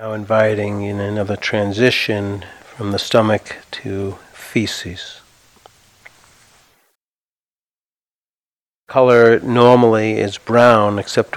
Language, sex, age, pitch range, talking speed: English, male, 50-69, 100-120 Hz, 80 wpm